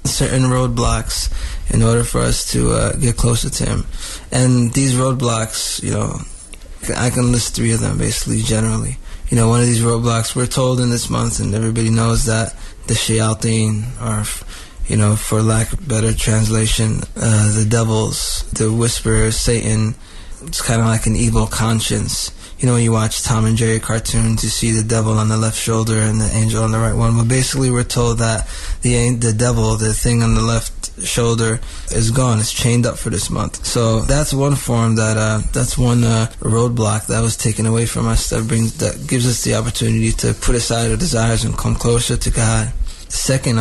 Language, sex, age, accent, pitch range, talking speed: English, male, 20-39, American, 110-120 Hz, 195 wpm